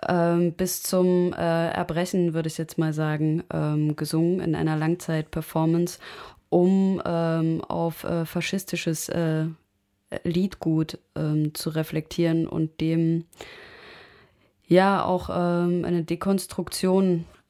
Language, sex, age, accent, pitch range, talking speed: German, female, 20-39, German, 155-170 Hz, 80 wpm